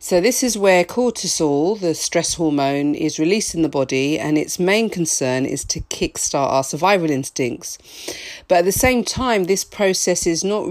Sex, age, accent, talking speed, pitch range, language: female, 40-59, British, 180 wpm, 150-185 Hz, English